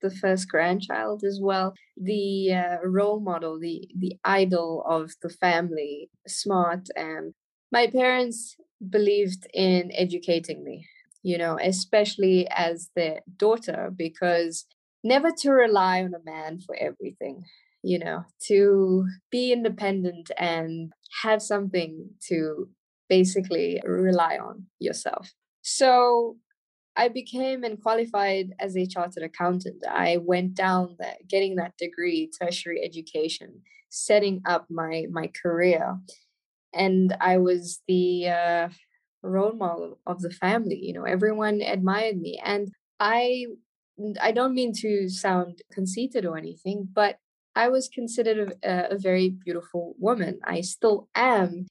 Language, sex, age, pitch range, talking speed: English, female, 20-39, 175-210 Hz, 130 wpm